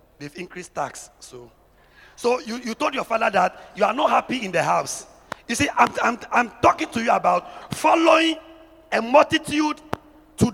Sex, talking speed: male, 175 wpm